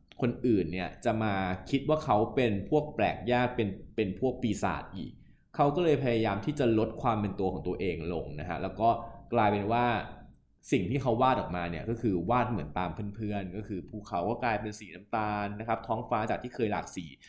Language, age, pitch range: Thai, 20-39, 100-120 Hz